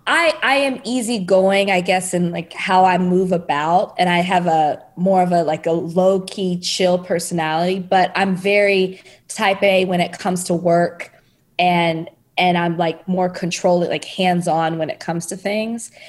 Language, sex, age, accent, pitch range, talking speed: English, female, 20-39, American, 170-195 Hz, 185 wpm